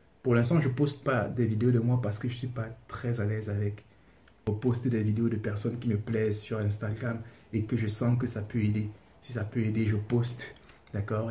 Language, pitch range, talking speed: French, 105-115 Hz, 245 wpm